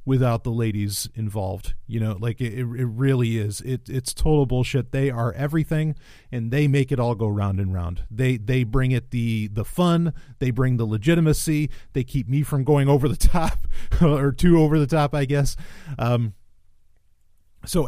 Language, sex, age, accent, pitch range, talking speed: English, male, 40-59, American, 110-140 Hz, 185 wpm